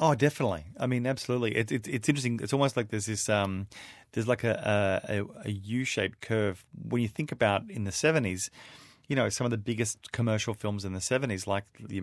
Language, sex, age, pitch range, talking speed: English, male, 30-49, 100-120 Hz, 200 wpm